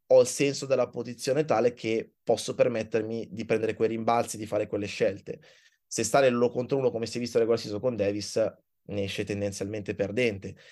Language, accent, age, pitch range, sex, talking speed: Italian, native, 20-39, 115-140 Hz, male, 180 wpm